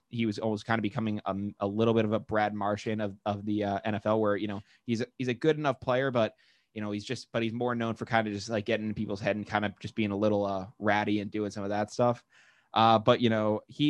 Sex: male